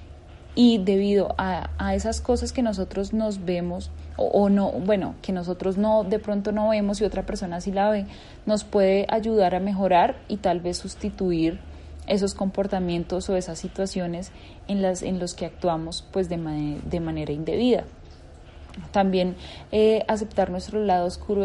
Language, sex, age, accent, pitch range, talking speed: Spanish, female, 10-29, Colombian, 175-205 Hz, 165 wpm